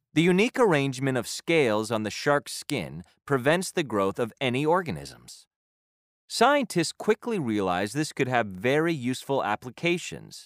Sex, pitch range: male, 120-175 Hz